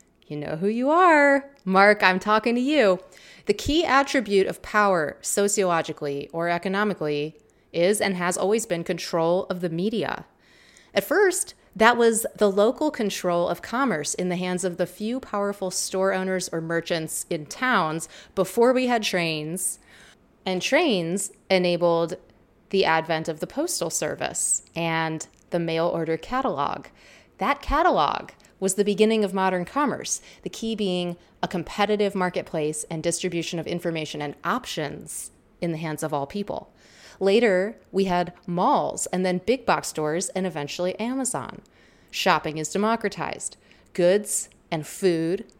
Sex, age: female, 30-49